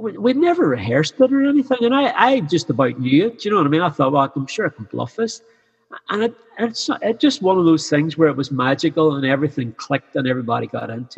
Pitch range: 130-165 Hz